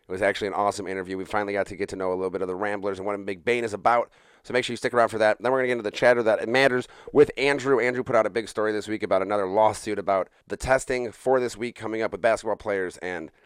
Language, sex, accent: English, male, American